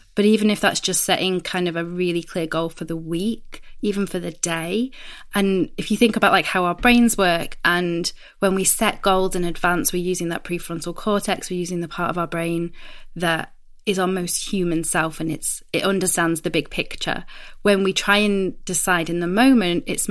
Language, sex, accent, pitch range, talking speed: English, female, British, 170-205 Hz, 210 wpm